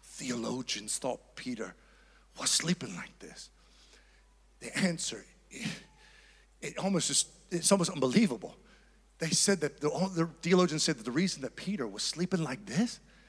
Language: English